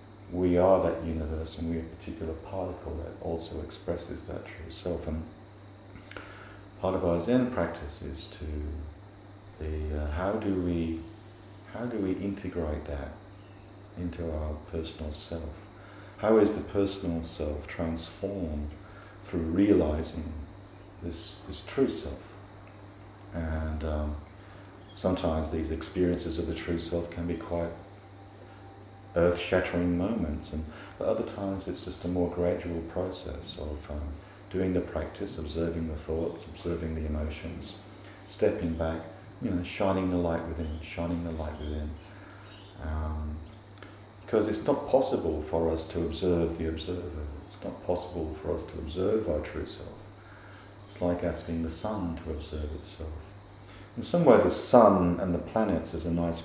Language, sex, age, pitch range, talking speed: English, male, 40-59, 80-100 Hz, 145 wpm